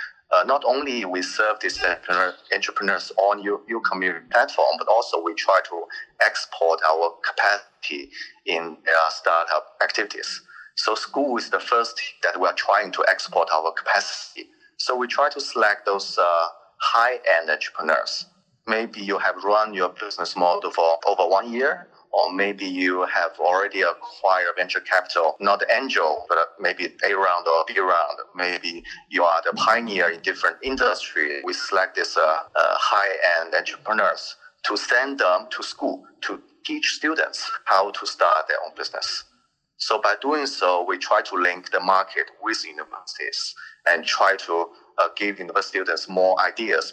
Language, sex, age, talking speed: English, male, 30-49, 160 wpm